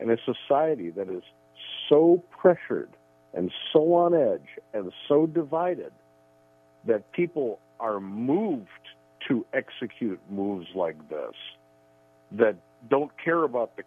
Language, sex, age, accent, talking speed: English, male, 60-79, American, 120 wpm